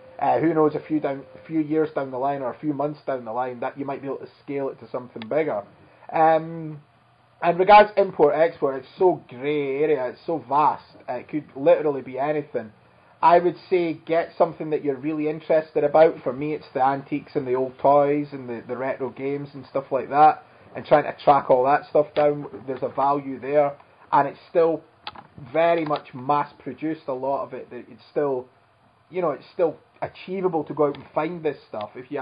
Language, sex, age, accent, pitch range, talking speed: English, male, 20-39, British, 135-160 Hz, 210 wpm